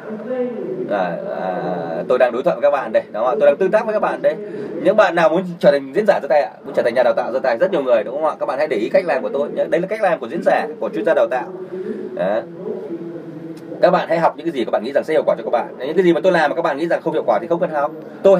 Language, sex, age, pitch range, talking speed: Vietnamese, male, 20-39, 165-195 Hz, 335 wpm